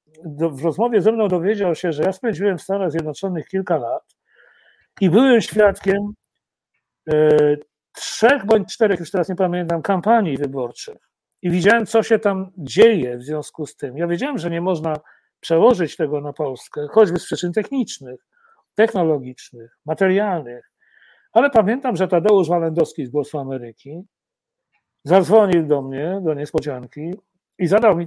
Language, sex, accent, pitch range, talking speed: Polish, male, native, 155-210 Hz, 145 wpm